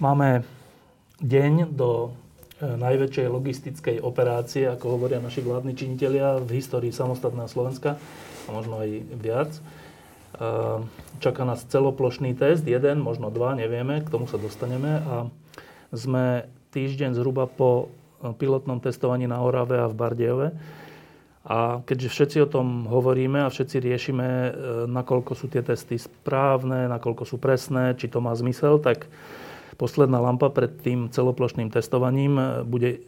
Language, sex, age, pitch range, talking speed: Slovak, male, 30-49, 120-135 Hz, 130 wpm